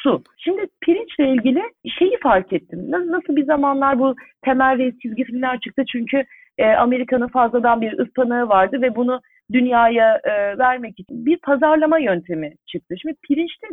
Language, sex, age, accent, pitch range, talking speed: Turkish, female, 40-59, native, 230-305 Hz, 145 wpm